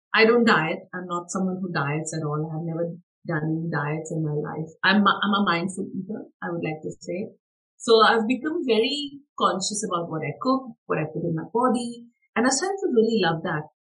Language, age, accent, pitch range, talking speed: English, 50-69, Indian, 165-220 Hz, 215 wpm